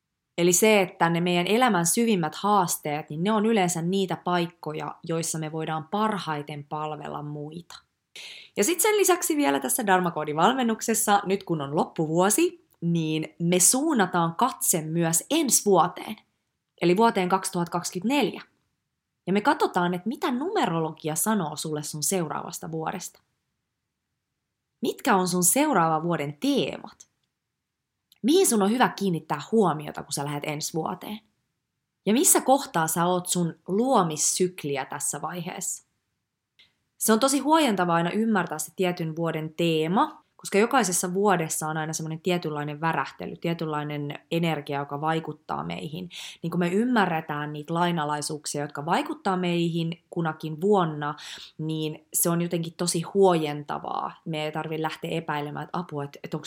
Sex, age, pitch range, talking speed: female, 20-39, 155-195 Hz, 135 wpm